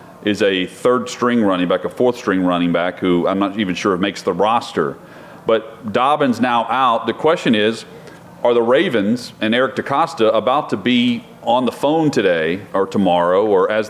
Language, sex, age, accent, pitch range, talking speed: English, male, 40-59, American, 110-145 Hz, 190 wpm